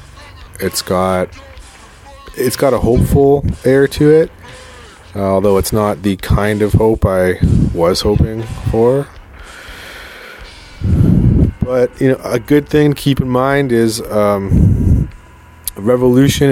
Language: English